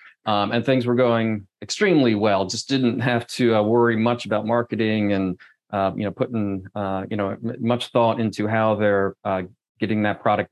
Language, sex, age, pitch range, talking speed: English, male, 30-49, 100-120 Hz, 190 wpm